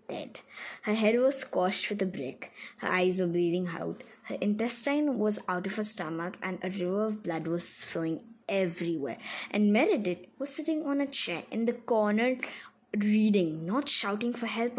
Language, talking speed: English, 170 wpm